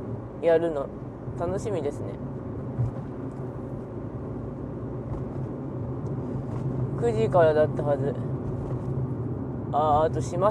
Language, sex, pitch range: Japanese, female, 125-180 Hz